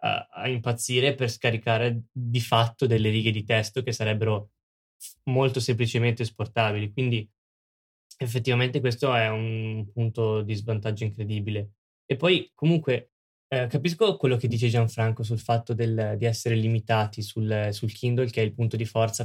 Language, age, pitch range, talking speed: Italian, 10-29, 110-125 Hz, 145 wpm